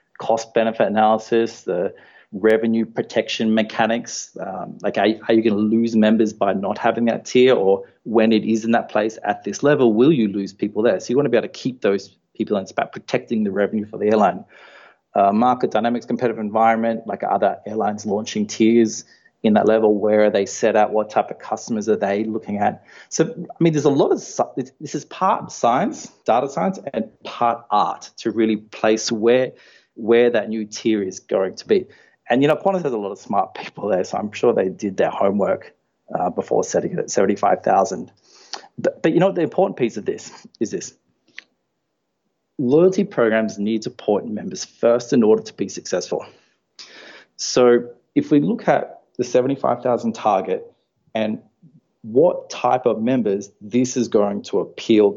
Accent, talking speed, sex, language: Australian, 190 wpm, male, English